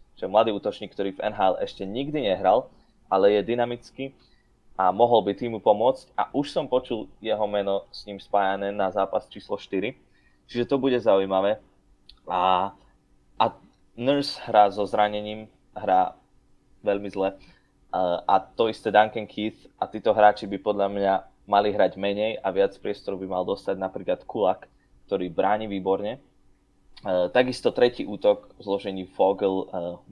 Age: 20-39